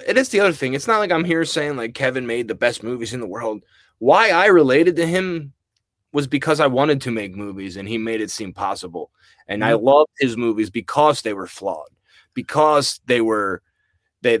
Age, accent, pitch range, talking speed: 20-39, American, 105-140 Hz, 215 wpm